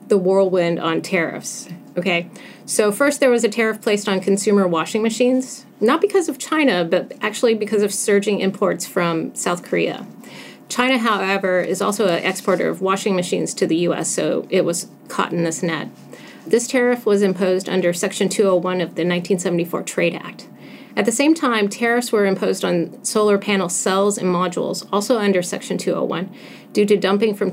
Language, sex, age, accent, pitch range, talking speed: English, female, 30-49, American, 180-220 Hz, 175 wpm